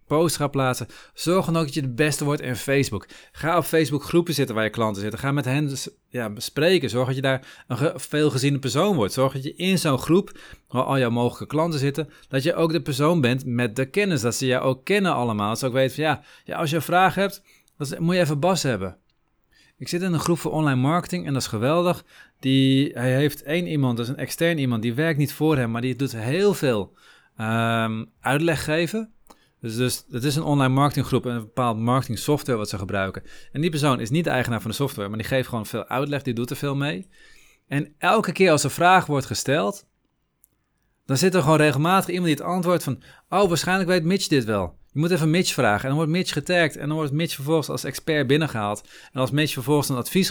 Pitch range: 120-160 Hz